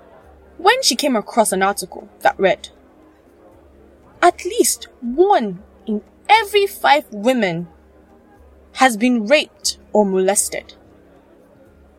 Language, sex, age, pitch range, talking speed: English, female, 20-39, 195-305 Hz, 100 wpm